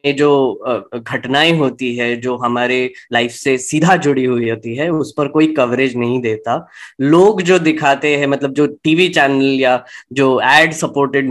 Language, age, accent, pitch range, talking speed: Hindi, 20-39, native, 130-160 Hz, 165 wpm